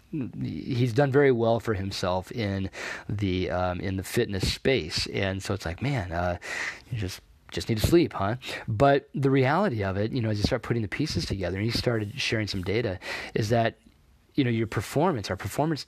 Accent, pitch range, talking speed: American, 95-115 Hz, 205 wpm